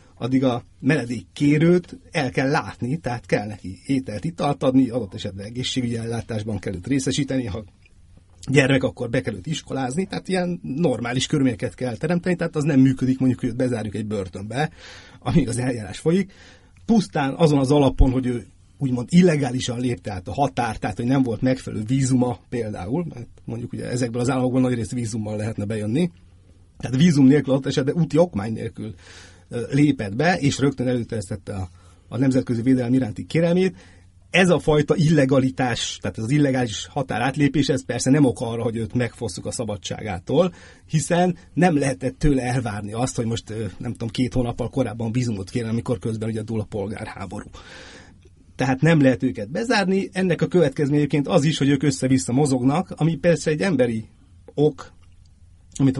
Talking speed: 165 wpm